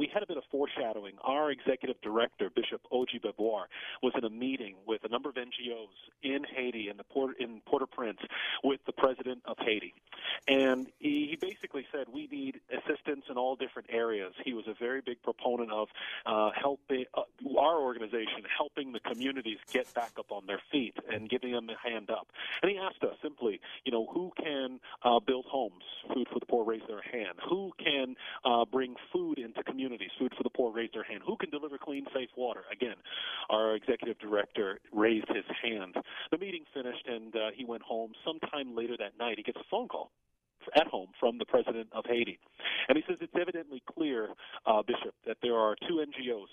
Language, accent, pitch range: English, American, 115-140 Hz